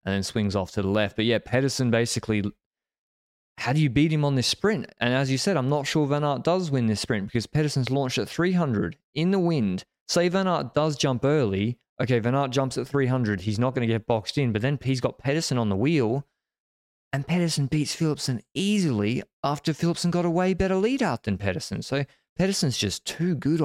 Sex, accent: male, Australian